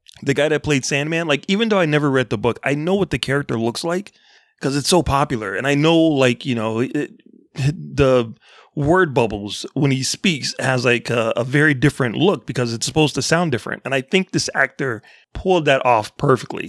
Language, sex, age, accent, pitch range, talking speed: English, male, 30-49, American, 125-160 Hz, 210 wpm